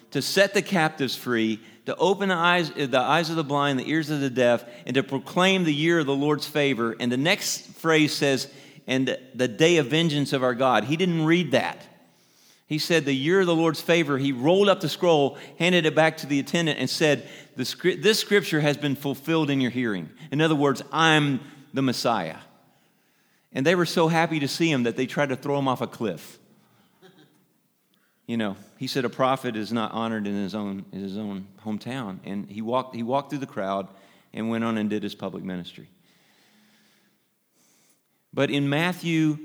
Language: English